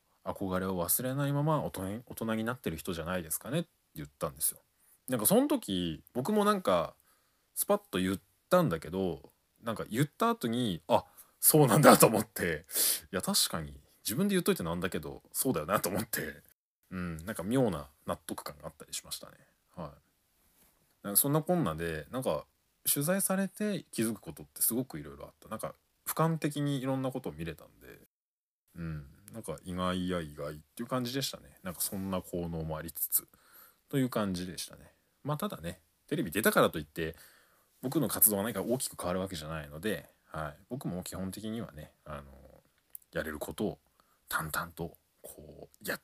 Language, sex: Japanese, male